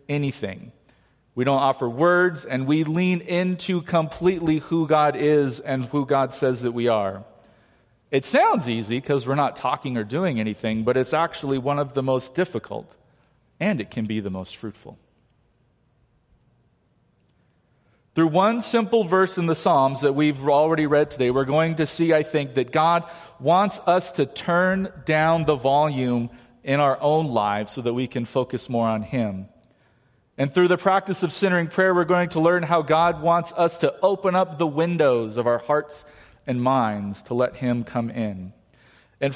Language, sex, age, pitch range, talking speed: English, male, 40-59, 120-170 Hz, 175 wpm